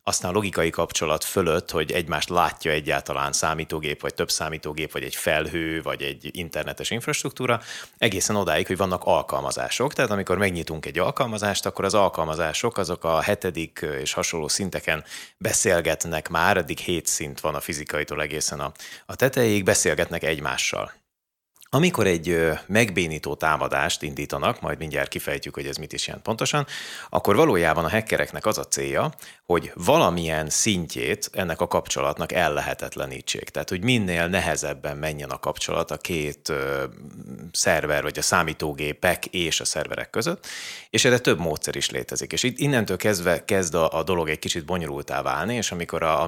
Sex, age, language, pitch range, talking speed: male, 30-49, Hungarian, 75-100 Hz, 155 wpm